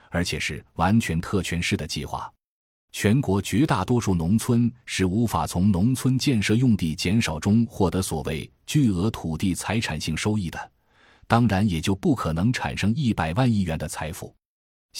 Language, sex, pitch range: Chinese, male, 80-110 Hz